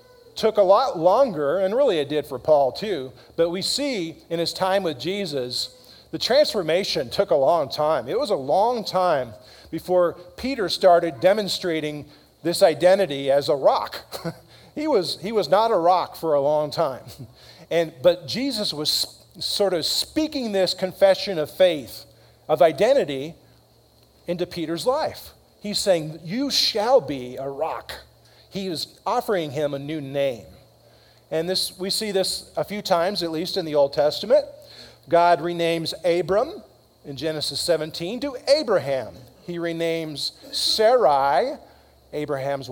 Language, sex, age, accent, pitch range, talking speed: English, male, 40-59, American, 150-190 Hz, 150 wpm